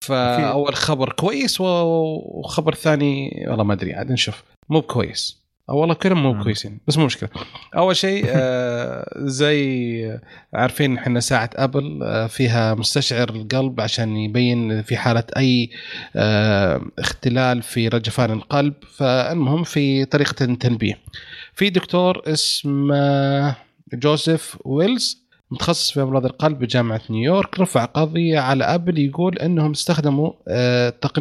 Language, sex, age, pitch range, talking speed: Arabic, male, 30-49, 125-160 Hz, 115 wpm